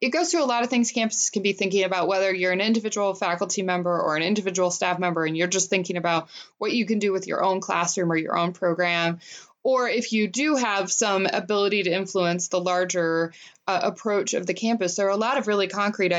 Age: 20-39